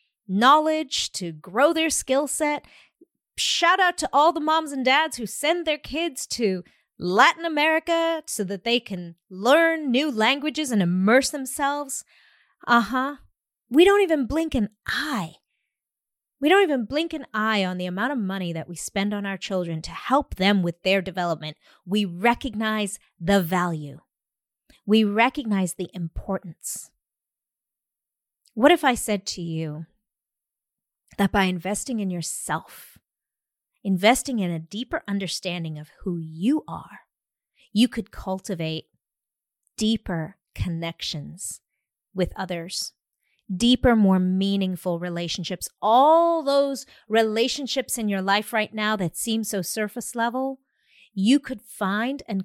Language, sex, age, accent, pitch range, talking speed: English, female, 30-49, American, 185-270 Hz, 135 wpm